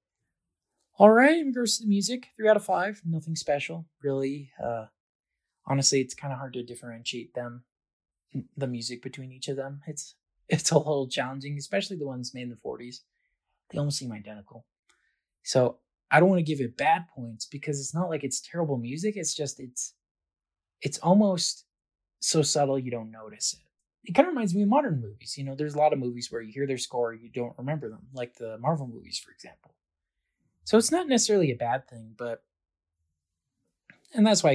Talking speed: 195 wpm